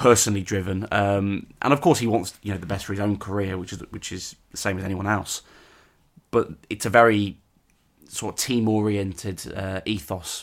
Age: 20-39